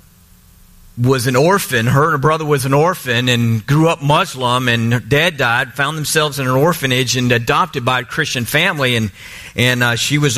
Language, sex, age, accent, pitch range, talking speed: English, male, 50-69, American, 110-145 Hz, 195 wpm